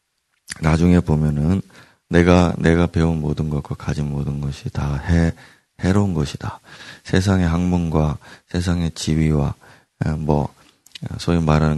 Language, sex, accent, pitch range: Korean, male, native, 80-105 Hz